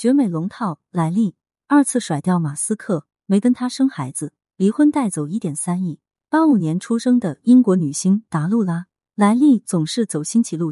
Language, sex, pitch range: Chinese, female, 160-235 Hz